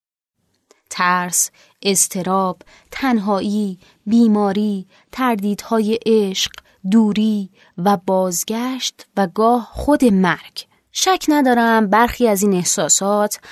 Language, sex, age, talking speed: Persian, female, 20-39, 85 wpm